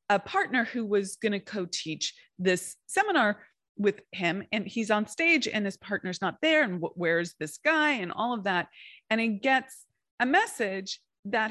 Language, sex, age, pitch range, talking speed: English, female, 30-49, 180-245 Hz, 180 wpm